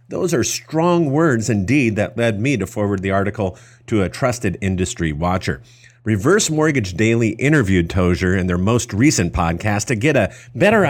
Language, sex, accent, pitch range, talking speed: English, male, American, 100-130 Hz, 170 wpm